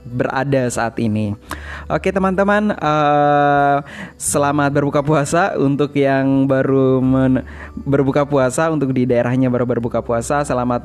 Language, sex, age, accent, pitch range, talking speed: Indonesian, male, 20-39, native, 125-145 Hz, 120 wpm